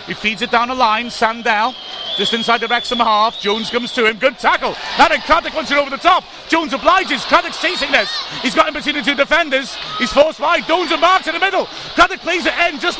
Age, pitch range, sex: 30-49, 210-285 Hz, male